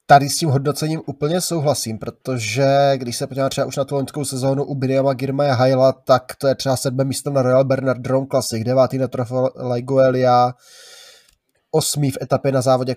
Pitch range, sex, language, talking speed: 125-140 Hz, male, Czech, 185 wpm